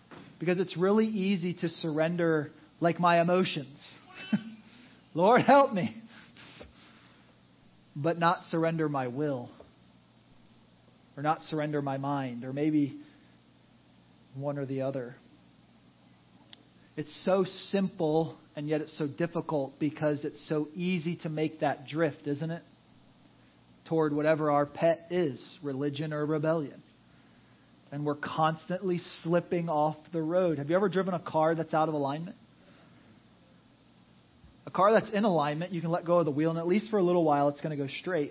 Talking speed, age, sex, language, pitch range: 150 wpm, 40-59, male, English, 145-185 Hz